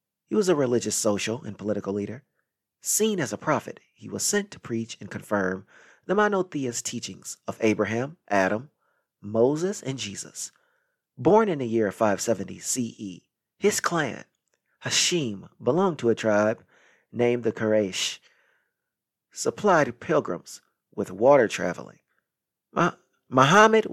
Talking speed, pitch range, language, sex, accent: 125 wpm, 105-155 Hz, English, male, American